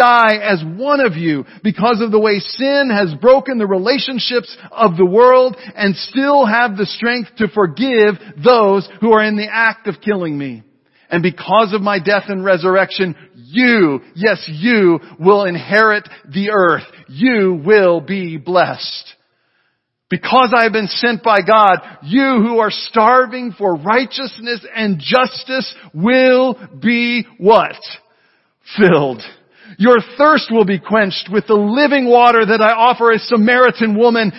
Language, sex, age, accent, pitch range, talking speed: English, male, 50-69, American, 200-240 Hz, 150 wpm